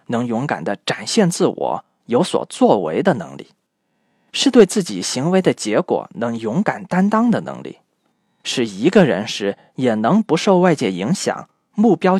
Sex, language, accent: male, Chinese, native